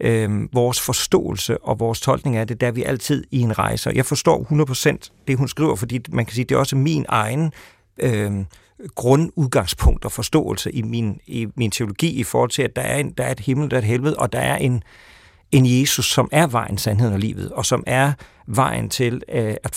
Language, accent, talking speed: Danish, native, 220 wpm